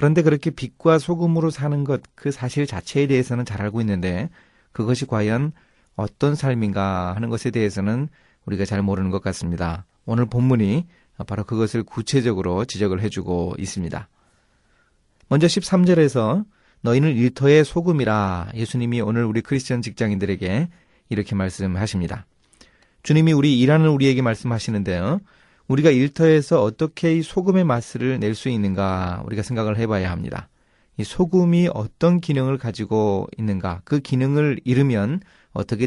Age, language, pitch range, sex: 30-49, Korean, 100-145 Hz, male